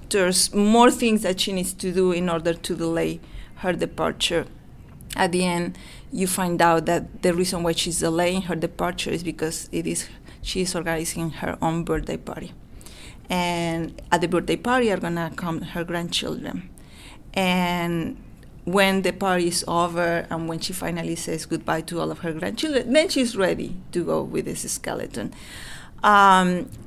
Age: 30-49